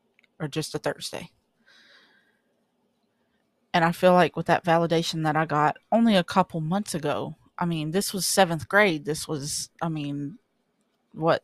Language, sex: English, female